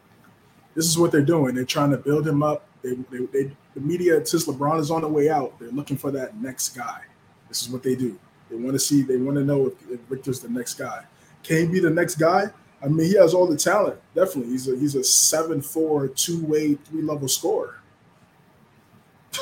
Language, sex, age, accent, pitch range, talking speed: English, male, 20-39, American, 135-160 Hz, 215 wpm